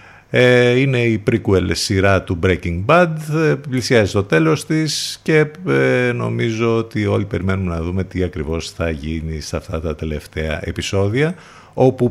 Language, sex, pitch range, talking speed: Greek, male, 85-125 Hz, 140 wpm